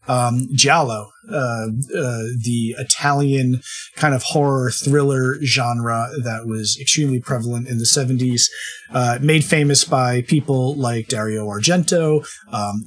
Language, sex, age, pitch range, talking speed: English, male, 30-49, 120-150 Hz, 125 wpm